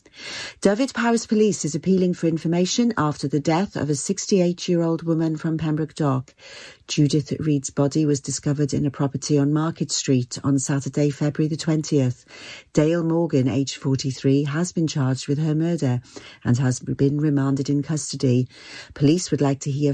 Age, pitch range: 40-59, 140-180 Hz